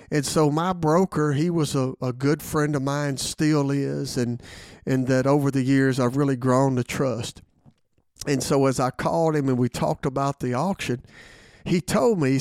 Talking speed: 200 wpm